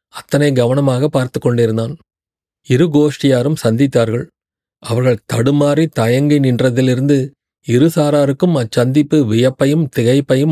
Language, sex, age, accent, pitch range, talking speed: Tamil, male, 30-49, native, 120-145 Hz, 85 wpm